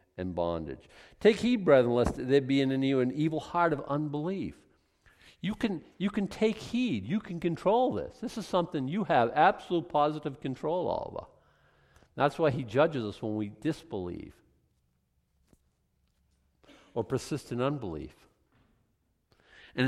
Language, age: English, 50-69